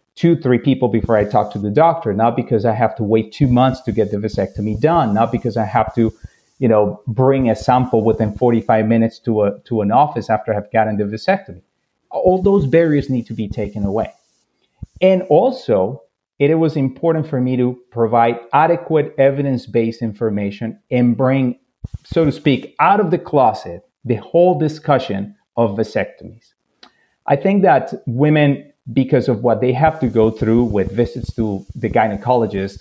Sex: male